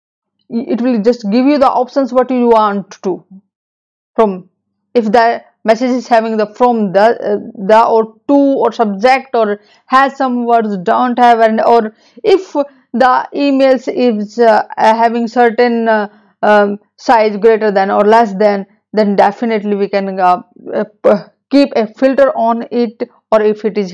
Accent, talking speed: Indian, 160 wpm